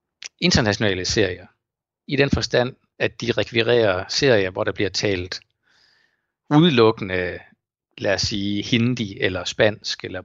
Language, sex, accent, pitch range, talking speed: Danish, male, native, 105-125 Hz, 125 wpm